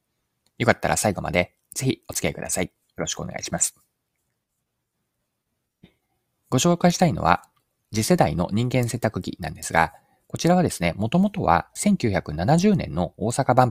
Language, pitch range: Japanese, 90-130 Hz